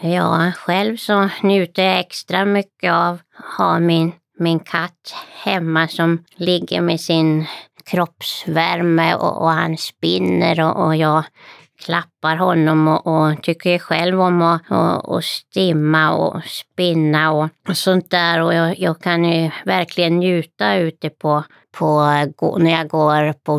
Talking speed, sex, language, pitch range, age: 145 wpm, female, Swedish, 155-175 Hz, 20-39